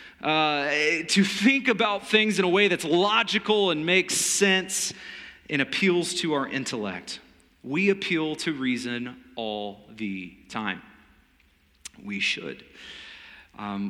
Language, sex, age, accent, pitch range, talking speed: English, male, 30-49, American, 150-210 Hz, 120 wpm